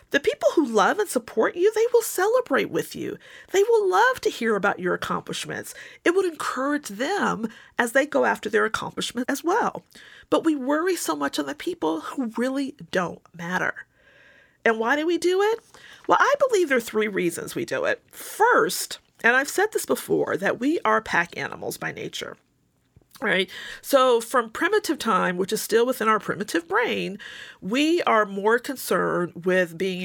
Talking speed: 180 wpm